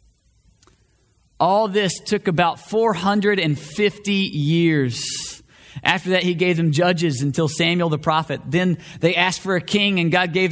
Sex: male